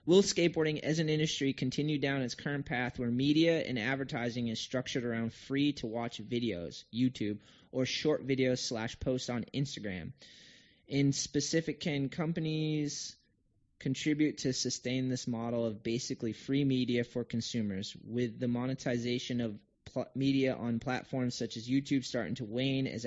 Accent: American